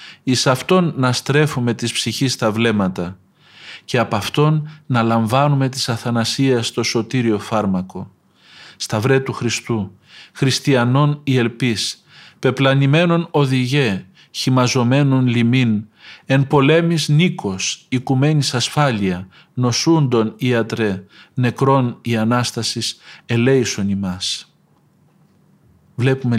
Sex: male